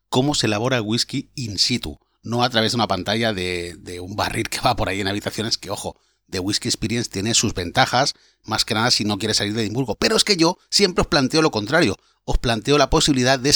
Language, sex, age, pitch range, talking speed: Spanish, male, 30-49, 110-140 Hz, 240 wpm